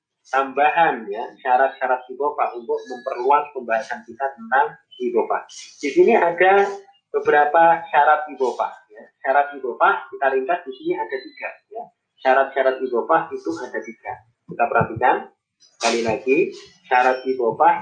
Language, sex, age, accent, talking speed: Indonesian, male, 30-49, native, 125 wpm